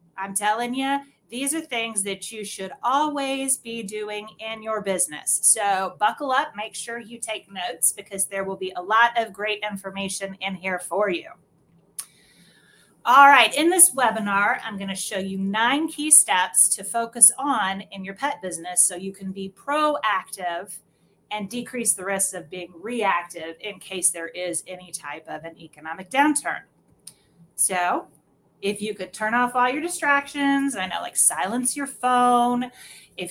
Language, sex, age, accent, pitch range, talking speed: English, female, 30-49, American, 185-235 Hz, 170 wpm